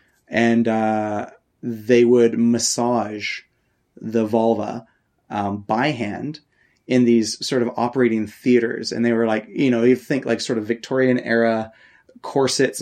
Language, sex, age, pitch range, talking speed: English, male, 30-49, 115-125 Hz, 140 wpm